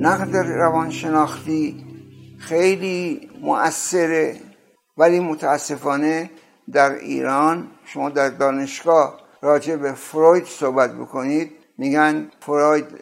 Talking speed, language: 85 wpm, Persian